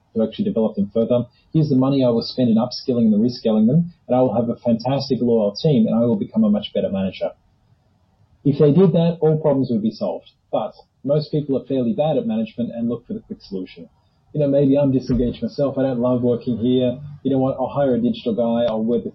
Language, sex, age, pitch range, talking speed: English, male, 30-49, 115-150 Hz, 240 wpm